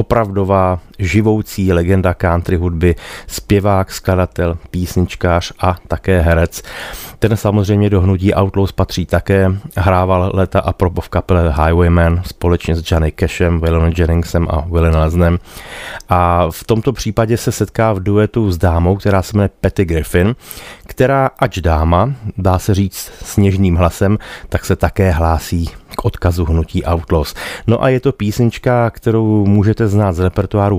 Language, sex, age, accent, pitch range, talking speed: Czech, male, 30-49, native, 85-105 Hz, 145 wpm